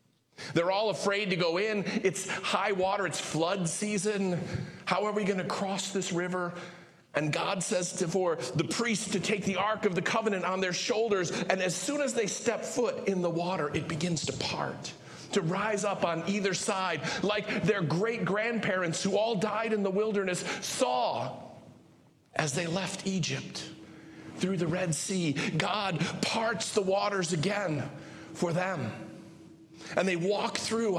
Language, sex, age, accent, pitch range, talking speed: English, male, 40-59, American, 160-200 Hz, 165 wpm